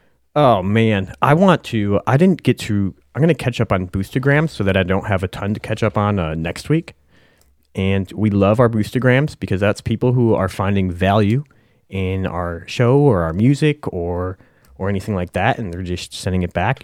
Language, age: English, 30-49